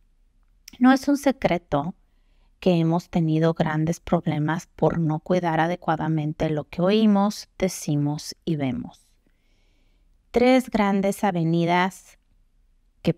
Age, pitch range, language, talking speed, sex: 30-49, 155-200 Hz, Spanish, 105 wpm, female